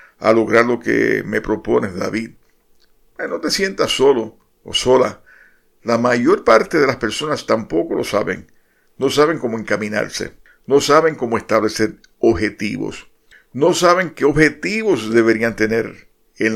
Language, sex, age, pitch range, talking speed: Spanish, male, 50-69, 110-140 Hz, 140 wpm